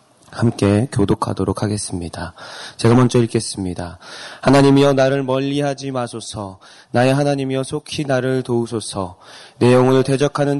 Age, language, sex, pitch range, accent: 20-39, Korean, male, 120-140 Hz, native